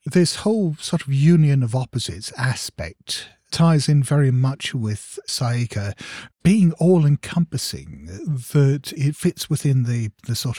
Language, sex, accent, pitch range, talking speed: English, male, British, 105-145 Hz, 130 wpm